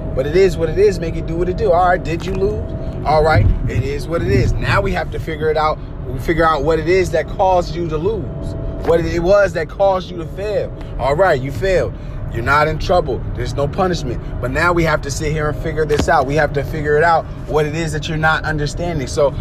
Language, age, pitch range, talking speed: English, 20-39, 130-160 Hz, 265 wpm